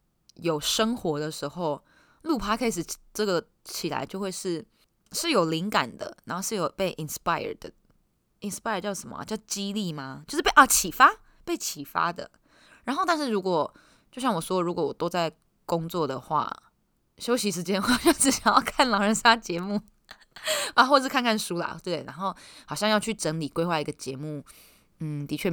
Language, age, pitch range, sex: Chinese, 20-39, 160-225 Hz, female